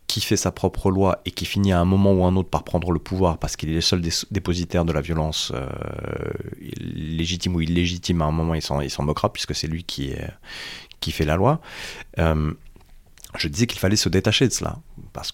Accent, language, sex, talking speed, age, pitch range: French, French, male, 225 wpm, 30-49, 80-105 Hz